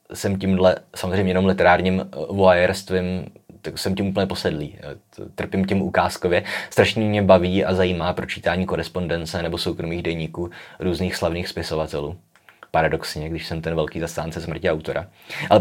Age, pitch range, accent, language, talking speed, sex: 20-39, 85-95 Hz, native, Czech, 140 wpm, male